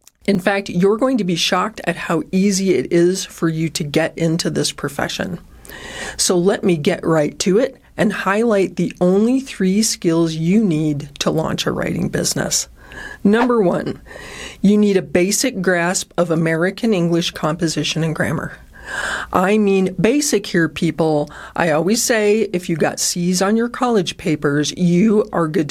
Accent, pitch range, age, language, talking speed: American, 160-205 Hz, 40-59, English, 165 wpm